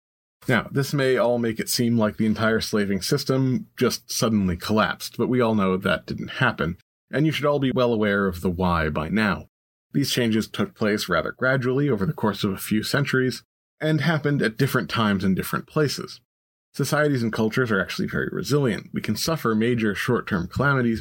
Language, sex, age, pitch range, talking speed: English, male, 30-49, 105-140 Hz, 195 wpm